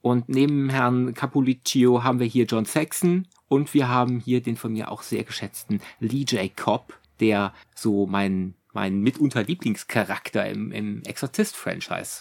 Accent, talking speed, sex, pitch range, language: German, 150 wpm, male, 110-150 Hz, German